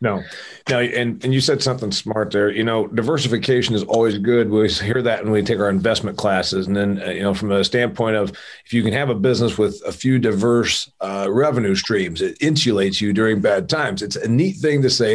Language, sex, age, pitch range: English, male, 40-59, 110-140 Hz